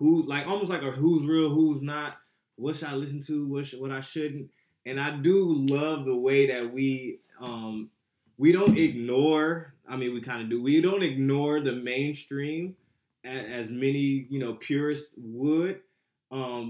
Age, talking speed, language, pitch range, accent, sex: 20-39, 180 wpm, English, 125-170 Hz, American, male